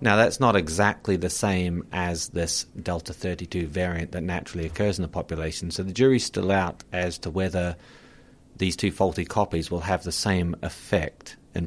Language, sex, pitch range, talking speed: English, male, 85-100 Hz, 175 wpm